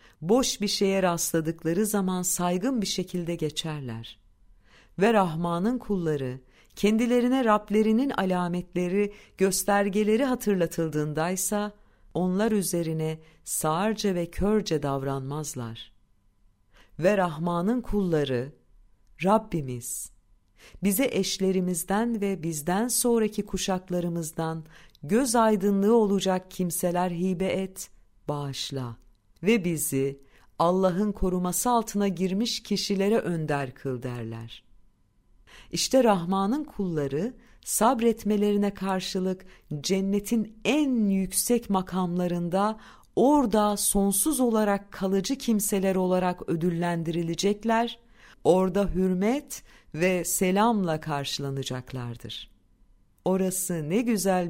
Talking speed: 80 wpm